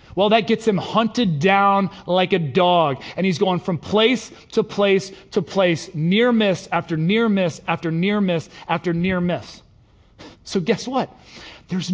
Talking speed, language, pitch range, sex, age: 165 wpm, English, 150-210 Hz, male, 30-49